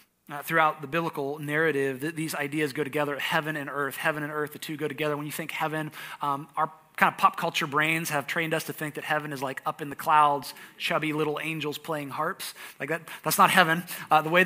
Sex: male